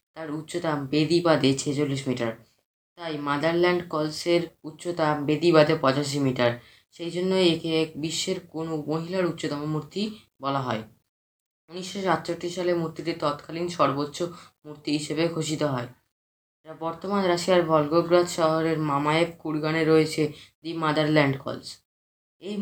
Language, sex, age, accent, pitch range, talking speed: Bengali, female, 20-39, native, 145-175 Hz, 115 wpm